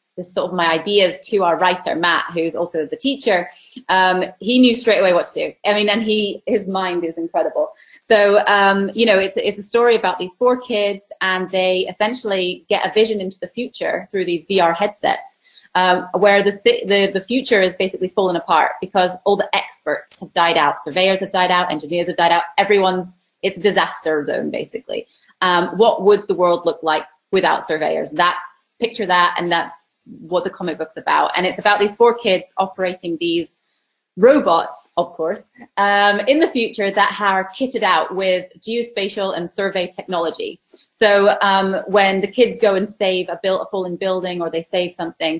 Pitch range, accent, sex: 175-205 Hz, British, female